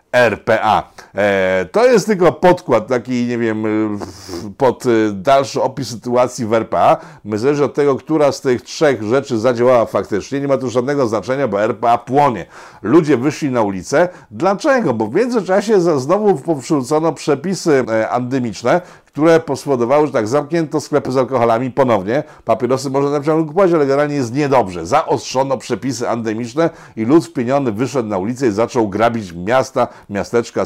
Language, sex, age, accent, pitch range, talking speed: Polish, male, 50-69, native, 115-155 Hz, 150 wpm